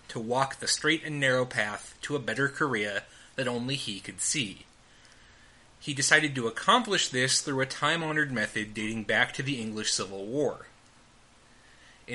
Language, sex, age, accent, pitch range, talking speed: English, male, 30-49, American, 115-150 Hz, 165 wpm